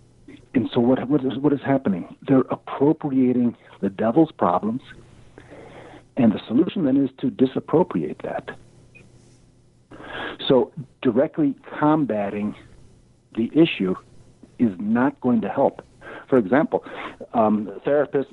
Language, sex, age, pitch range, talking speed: English, male, 60-79, 115-175 Hz, 115 wpm